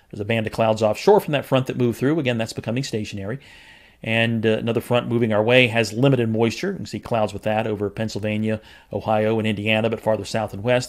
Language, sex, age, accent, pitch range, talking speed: English, male, 40-59, American, 110-135 Hz, 230 wpm